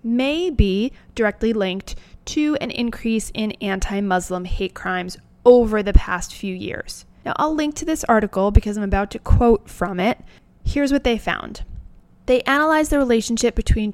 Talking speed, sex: 165 wpm, female